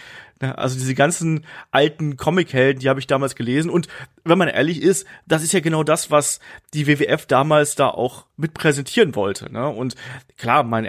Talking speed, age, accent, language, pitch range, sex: 175 wpm, 30-49, German, German, 125-150 Hz, male